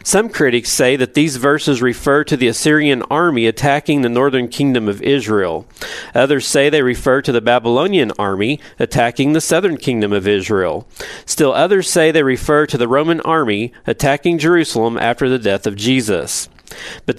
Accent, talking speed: American, 170 wpm